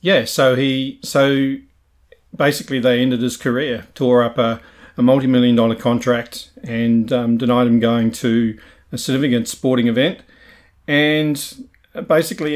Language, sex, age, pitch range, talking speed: English, male, 40-59, 125-145 Hz, 135 wpm